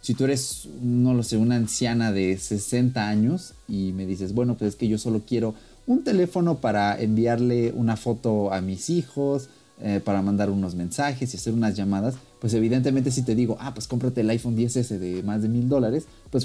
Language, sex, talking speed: Spanish, male, 205 wpm